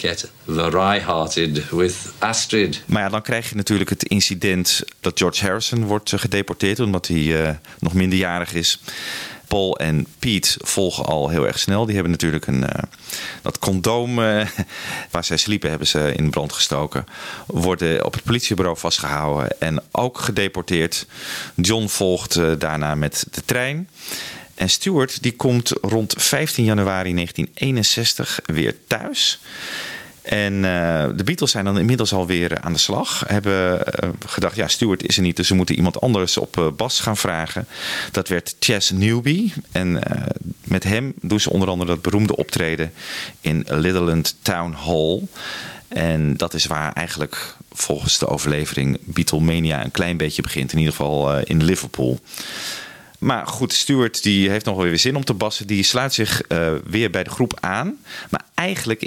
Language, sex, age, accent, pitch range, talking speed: Dutch, male, 40-59, Dutch, 80-110 Hz, 165 wpm